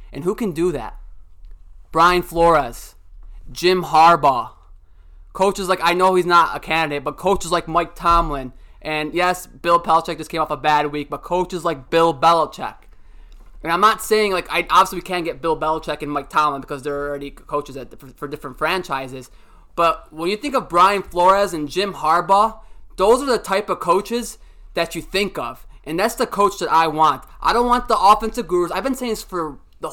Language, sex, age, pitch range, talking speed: English, male, 20-39, 150-195 Hz, 205 wpm